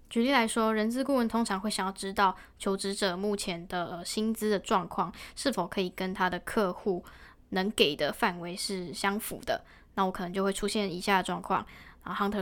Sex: female